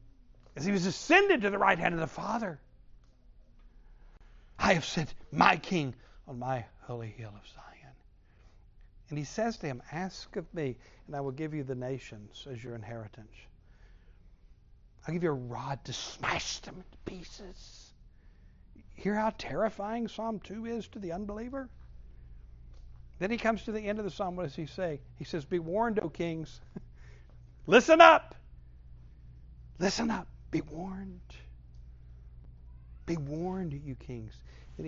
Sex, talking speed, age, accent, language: male, 155 wpm, 60-79, American, English